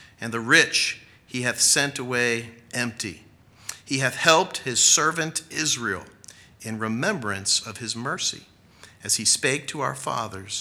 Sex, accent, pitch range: male, American, 100-120 Hz